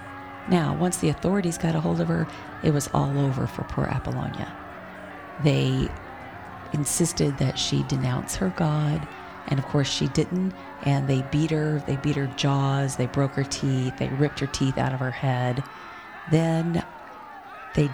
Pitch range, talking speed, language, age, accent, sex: 100-150 Hz, 165 wpm, English, 40-59, American, female